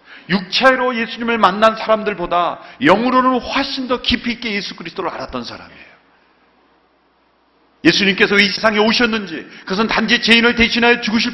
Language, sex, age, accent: Korean, male, 40-59, native